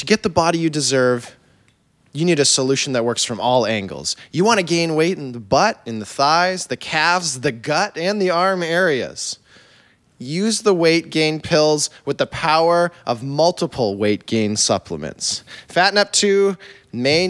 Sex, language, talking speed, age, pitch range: male, English, 175 wpm, 20-39, 120-165 Hz